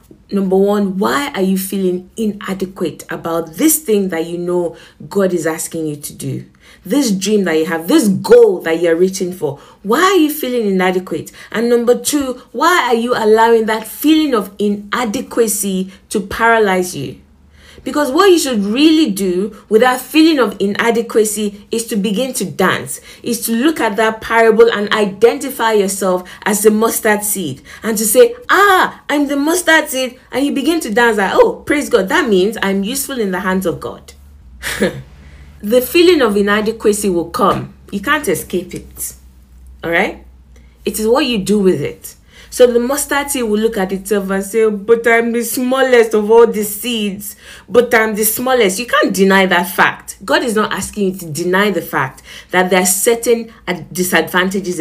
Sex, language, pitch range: female, English, 185-240 Hz